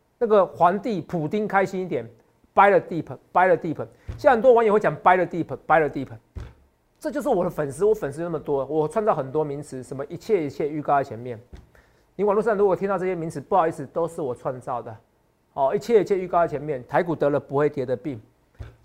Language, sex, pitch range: Chinese, male, 130-180 Hz